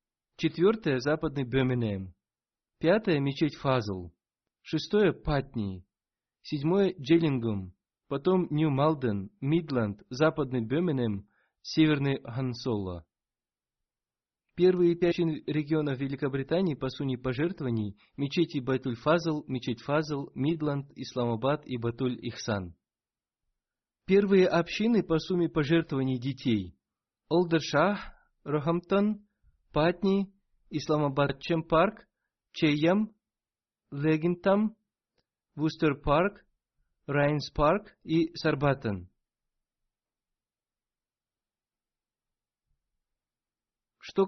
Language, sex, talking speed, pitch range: Russian, male, 75 wpm, 130-170 Hz